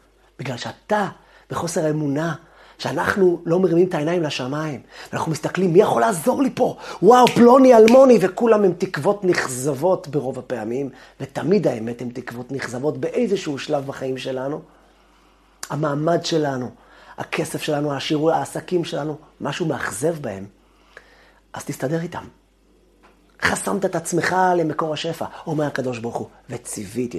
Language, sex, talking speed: Hebrew, male, 130 wpm